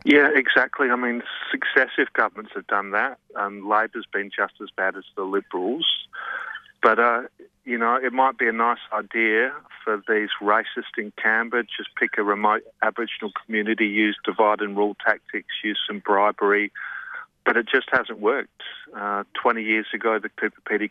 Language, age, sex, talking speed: English, 40-59, male, 165 wpm